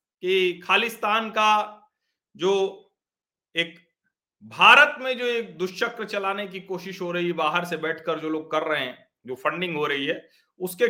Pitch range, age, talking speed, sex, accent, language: 175-235 Hz, 50-69, 160 wpm, male, native, Hindi